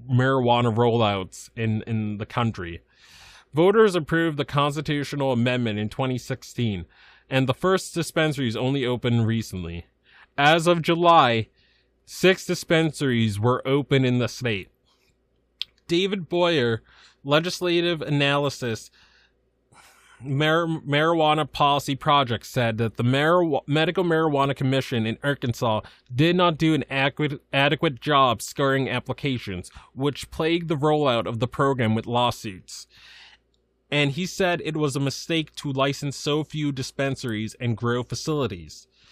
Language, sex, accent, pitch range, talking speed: English, male, American, 120-155 Hz, 125 wpm